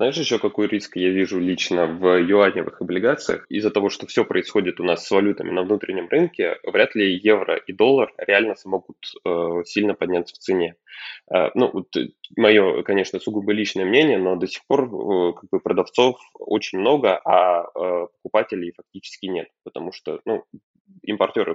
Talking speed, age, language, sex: 170 wpm, 20-39, Russian, male